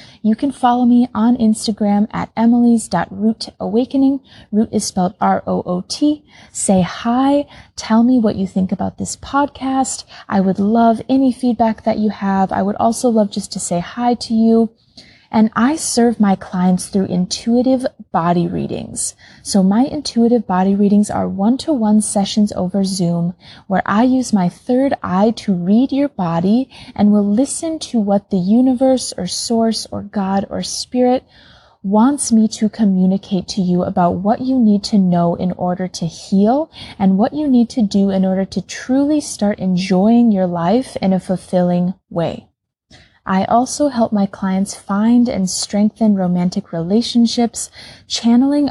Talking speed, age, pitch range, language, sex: 155 wpm, 20-39, 185-240 Hz, English, female